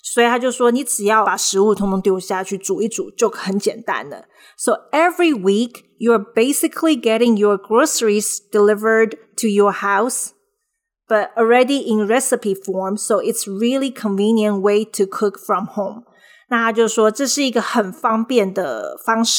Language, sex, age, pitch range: Chinese, female, 20-39, 205-245 Hz